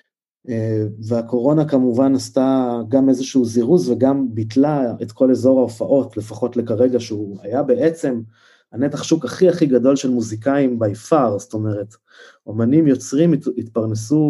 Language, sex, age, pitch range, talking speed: Hebrew, male, 20-39, 115-140 Hz, 130 wpm